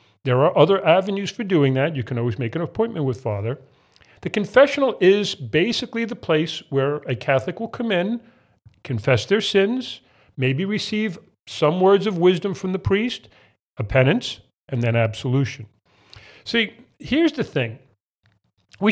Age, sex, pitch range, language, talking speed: 40-59, male, 130-195 Hz, English, 155 wpm